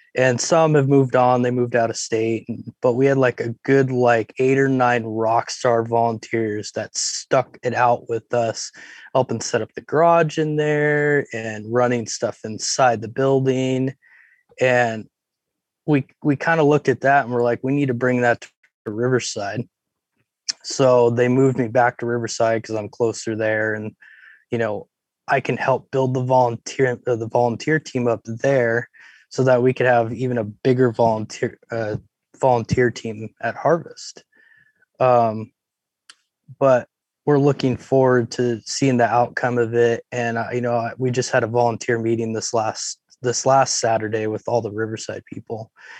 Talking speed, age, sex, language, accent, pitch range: 170 wpm, 20-39, male, English, American, 115-135 Hz